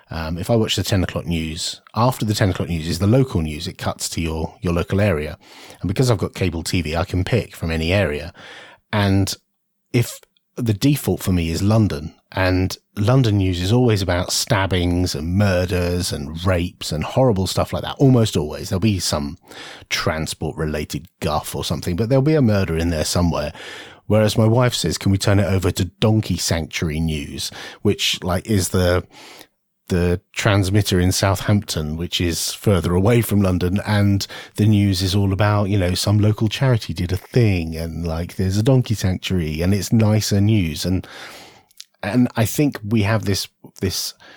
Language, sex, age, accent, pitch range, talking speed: English, male, 30-49, British, 90-105 Hz, 185 wpm